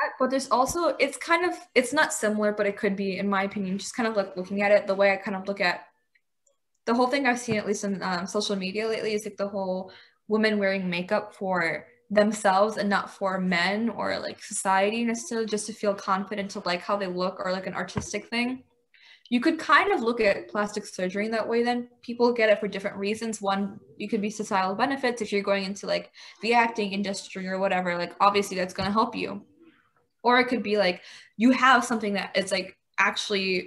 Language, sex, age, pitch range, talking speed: English, female, 10-29, 195-235 Hz, 225 wpm